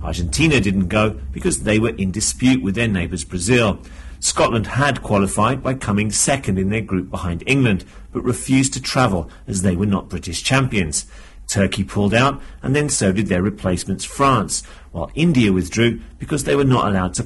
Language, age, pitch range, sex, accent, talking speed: English, 40-59, 90-125 Hz, male, British, 180 wpm